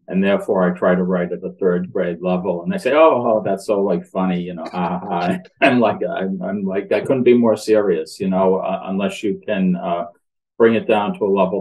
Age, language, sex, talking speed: 40-59, English, male, 240 wpm